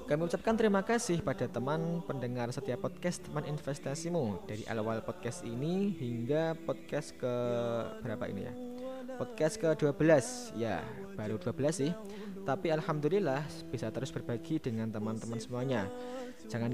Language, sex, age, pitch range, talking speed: Indonesian, male, 20-39, 125-175 Hz, 135 wpm